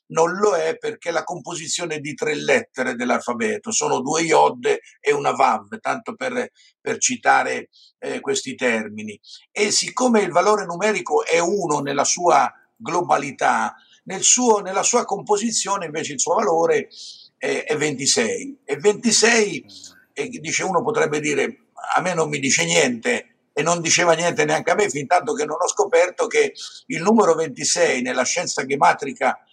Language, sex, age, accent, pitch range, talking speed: Italian, male, 50-69, native, 170-245 Hz, 160 wpm